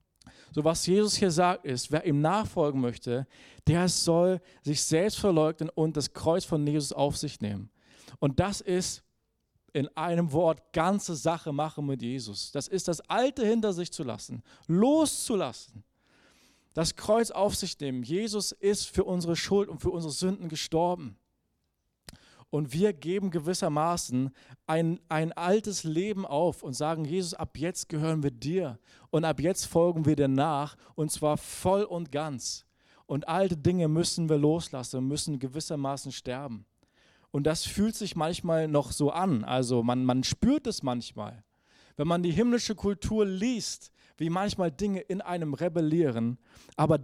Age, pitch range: 40-59, 140-180 Hz